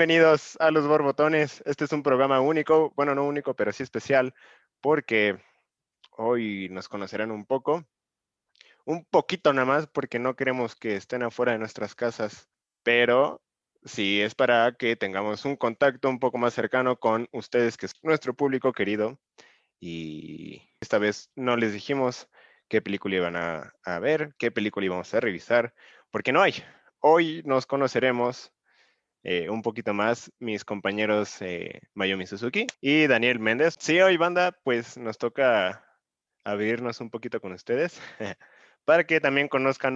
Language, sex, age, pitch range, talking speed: Spanish, male, 20-39, 105-140 Hz, 155 wpm